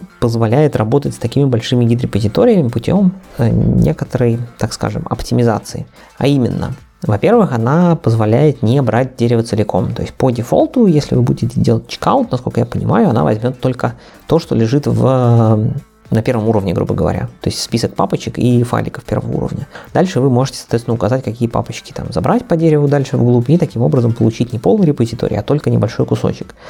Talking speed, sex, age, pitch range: 170 wpm, male, 20-39, 110-135 Hz